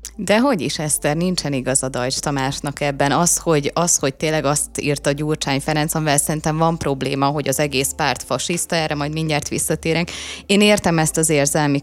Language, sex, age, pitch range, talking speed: Hungarian, female, 20-39, 145-170 Hz, 195 wpm